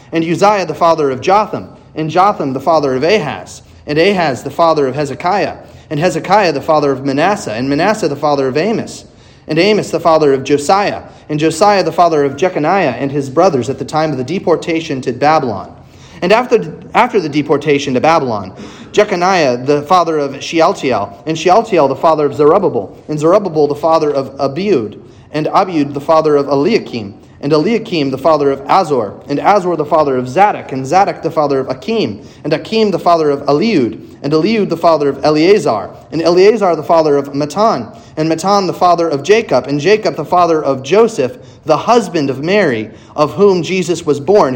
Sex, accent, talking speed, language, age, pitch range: male, American, 185 wpm, English, 30-49, 140-180 Hz